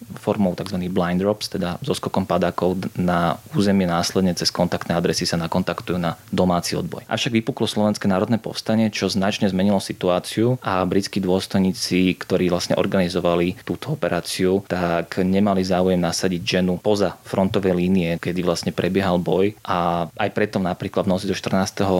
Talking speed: 155 wpm